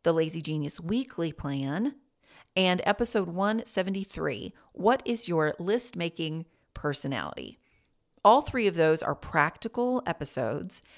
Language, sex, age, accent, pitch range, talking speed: English, female, 40-59, American, 165-235 Hz, 110 wpm